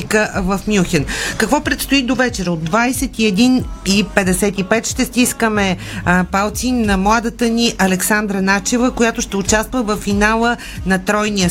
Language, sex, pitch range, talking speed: Bulgarian, female, 195-235 Hz, 120 wpm